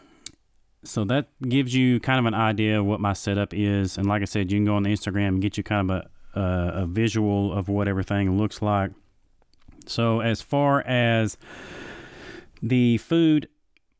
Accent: American